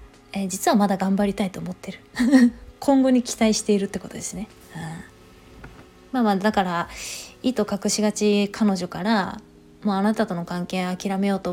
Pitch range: 180-230 Hz